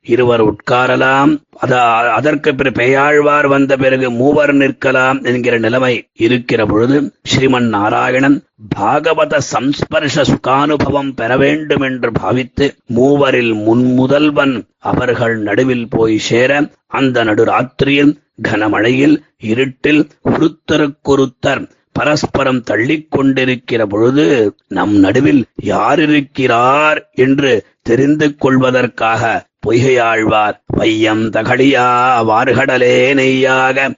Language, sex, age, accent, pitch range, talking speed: Tamil, male, 30-49, native, 120-135 Hz, 80 wpm